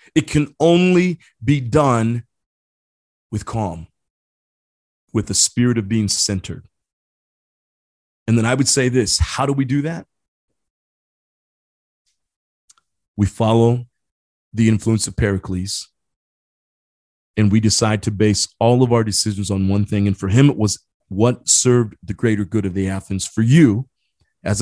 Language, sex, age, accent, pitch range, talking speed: English, male, 30-49, American, 95-120 Hz, 140 wpm